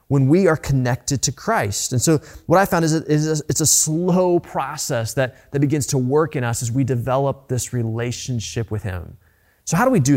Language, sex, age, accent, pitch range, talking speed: English, male, 20-39, American, 120-155 Hz, 205 wpm